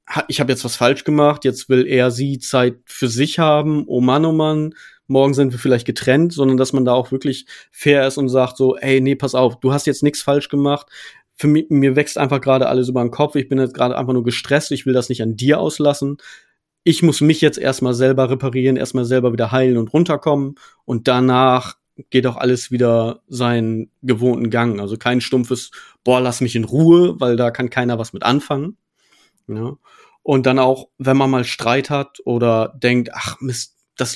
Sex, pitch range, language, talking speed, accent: male, 125-145 Hz, German, 205 wpm, German